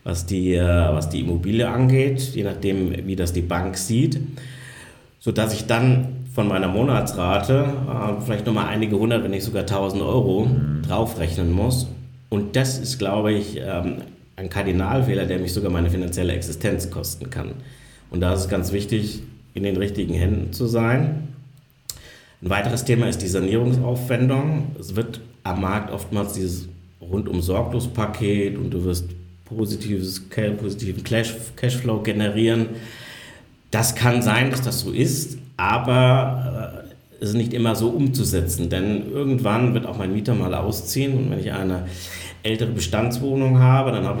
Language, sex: German, male